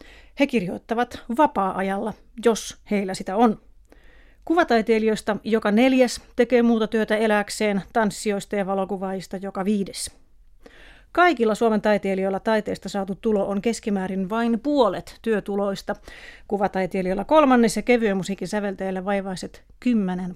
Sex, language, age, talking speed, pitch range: female, Finnish, 30-49, 110 wpm, 195-230 Hz